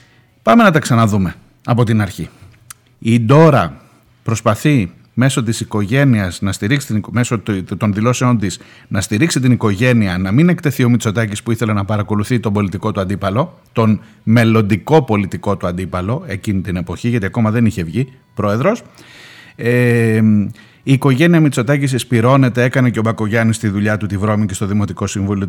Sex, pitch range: male, 100-125 Hz